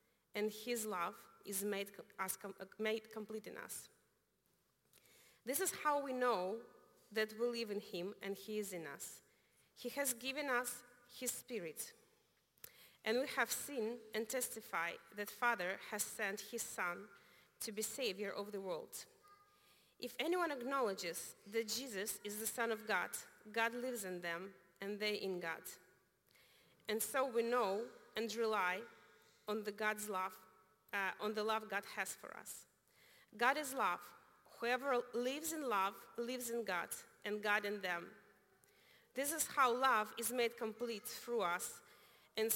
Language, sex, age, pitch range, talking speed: English, female, 30-49, 205-245 Hz, 150 wpm